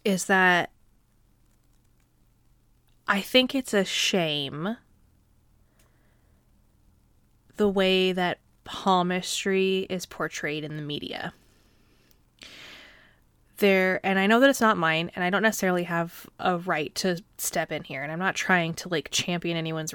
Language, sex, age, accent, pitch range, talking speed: English, female, 20-39, American, 170-205 Hz, 130 wpm